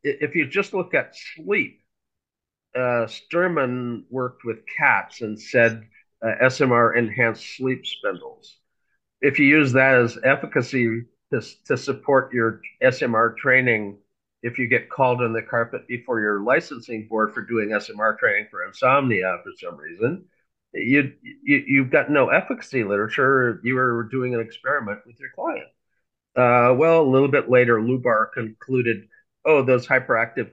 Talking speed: 150 wpm